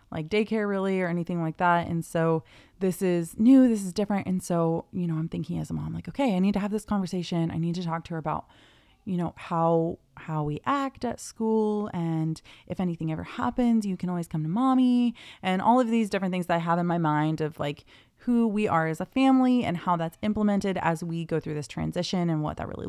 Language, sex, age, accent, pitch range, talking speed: English, female, 20-39, American, 155-200 Hz, 240 wpm